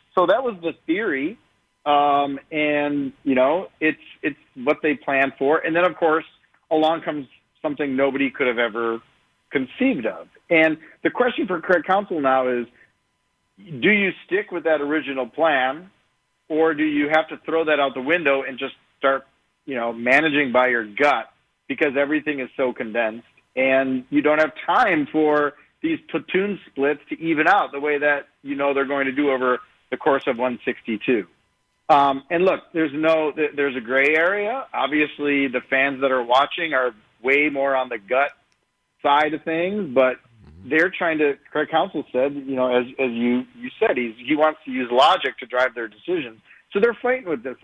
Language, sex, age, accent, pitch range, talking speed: English, male, 40-59, American, 130-160 Hz, 185 wpm